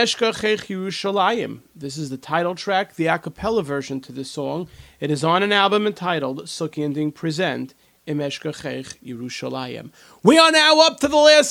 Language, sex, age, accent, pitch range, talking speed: English, male, 40-59, American, 145-210 Hz, 140 wpm